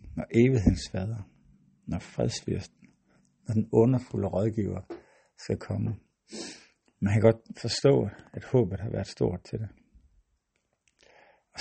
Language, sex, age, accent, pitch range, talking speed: Danish, male, 60-79, native, 95-115 Hz, 120 wpm